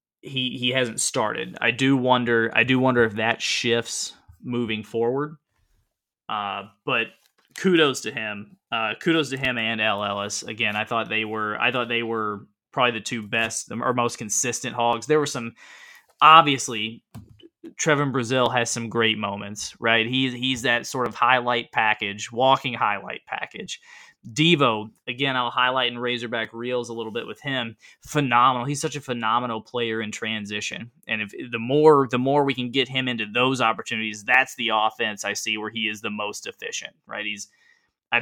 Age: 20-39